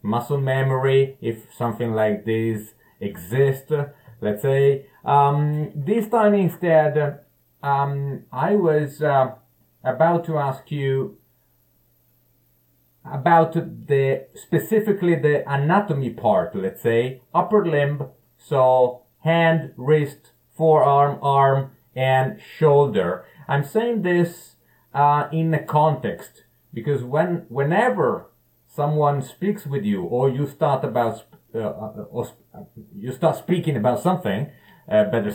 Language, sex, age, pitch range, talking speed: Italian, male, 30-49, 125-160 Hz, 115 wpm